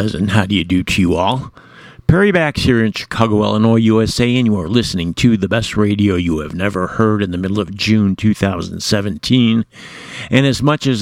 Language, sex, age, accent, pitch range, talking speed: English, male, 50-69, American, 105-125 Hz, 200 wpm